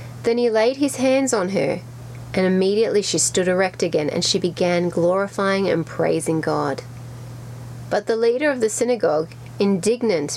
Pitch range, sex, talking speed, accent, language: 155-225 Hz, female, 155 wpm, Australian, English